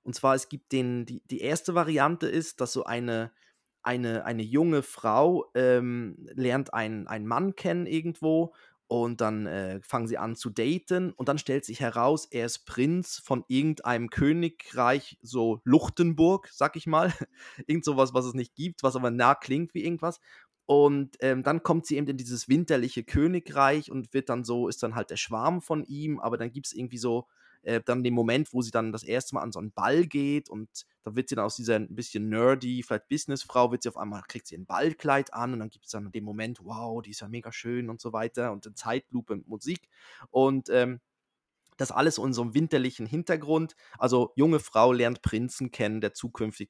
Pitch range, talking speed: 115-150 Hz, 205 wpm